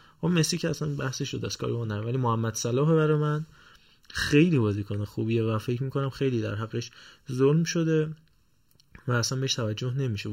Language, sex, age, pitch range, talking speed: Persian, male, 20-39, 115-140 Hz, 180 wpm